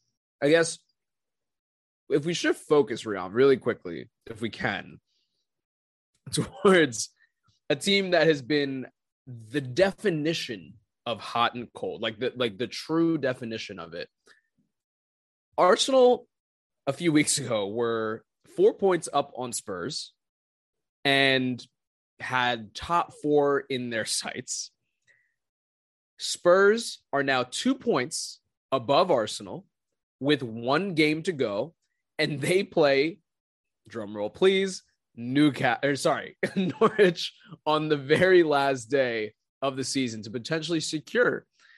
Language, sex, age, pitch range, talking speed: English, male, 20-39, 120-165 Hz, 120 wpm